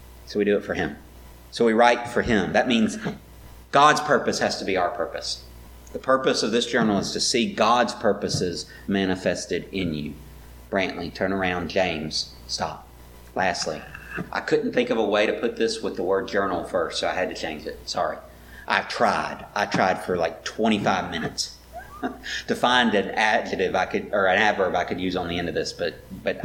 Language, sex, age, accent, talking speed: English, male, 40-59, American, 195 wpm